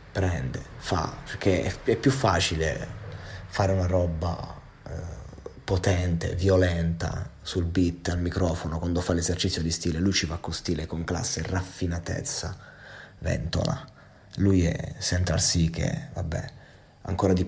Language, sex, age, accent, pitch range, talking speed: Italian, male, 30-49, native, 85-95 Hz, 130 wpm